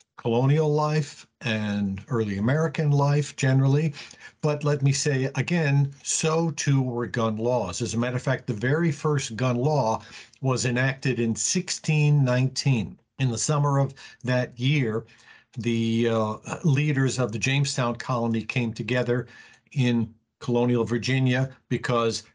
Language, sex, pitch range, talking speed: English, male, 115-140 Hz, 135 wpm